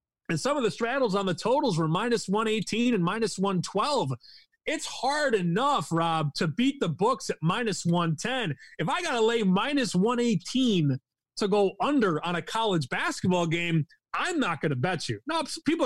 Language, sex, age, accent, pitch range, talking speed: English, male, 30-49, American, 165-225 Hz, 180 wpm